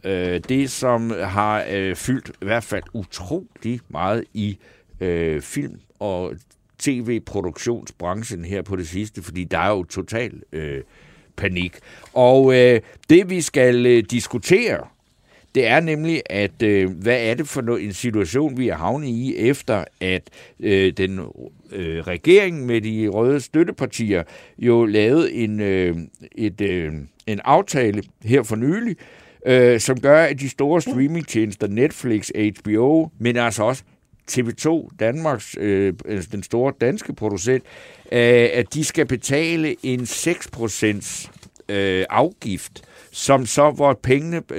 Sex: male